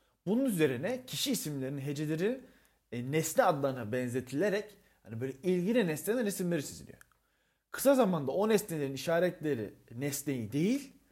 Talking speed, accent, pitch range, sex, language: 120 wpm, native, 115-185 Hz, male, Turkish